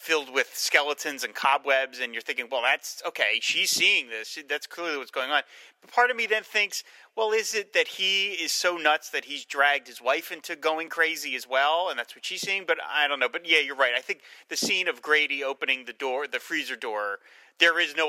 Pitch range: 130-175 Hz